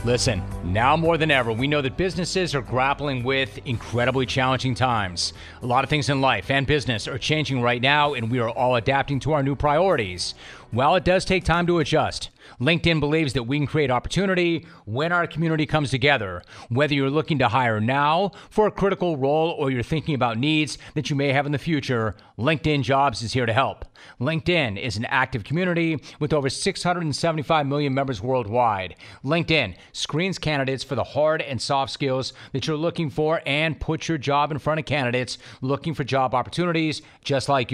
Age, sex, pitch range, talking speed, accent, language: 40-59, male, 125-160 Hz, 190 wpm, American, English